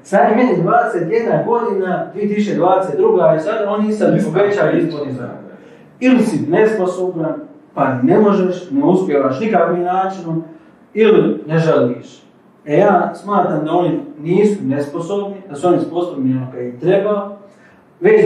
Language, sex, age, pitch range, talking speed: Croatian, male, 40-59, 170-205 Hz, 135 wpm